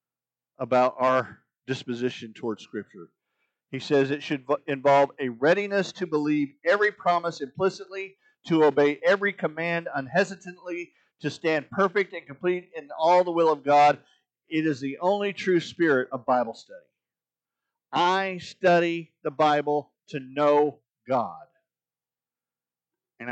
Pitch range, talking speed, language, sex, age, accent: 120-165 Hz, 130 wpm, English, male, 50-69, American